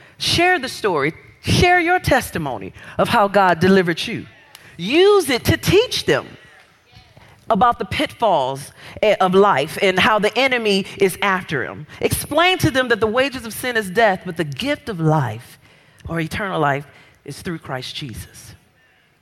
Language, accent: English, American